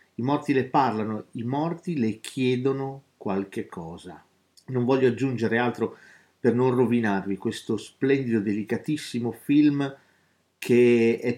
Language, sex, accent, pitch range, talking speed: Italian, male, native, 100-130 Hz, 120 wpm